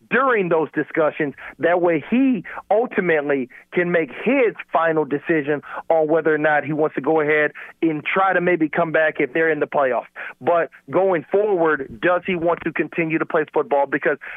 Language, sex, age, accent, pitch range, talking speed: English, male, 40-59, American, 155-185 Hz, 185 wpm